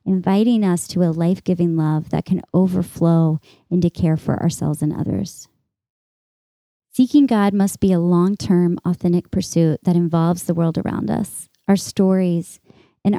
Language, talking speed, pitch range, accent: English, 145 wpm, 170-205 Hz, American